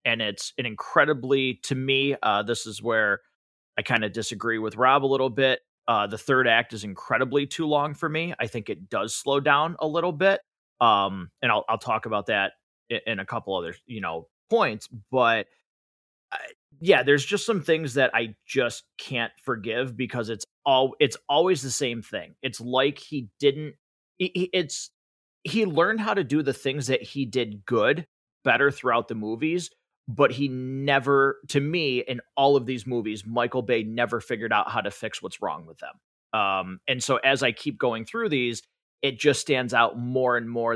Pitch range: 115-145 Hz